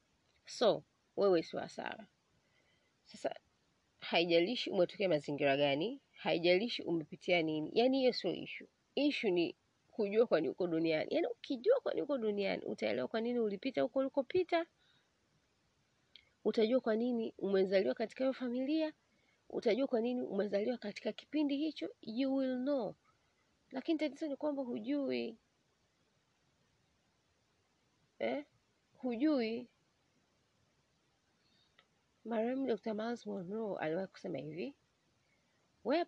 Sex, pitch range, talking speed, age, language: female, 180-260 Hz, 105 wpm, 30-49, Swahili